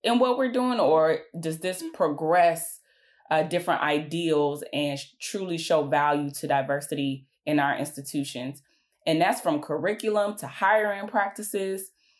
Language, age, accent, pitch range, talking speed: English, 20-39, American, 145-200 Hz, 135 wpm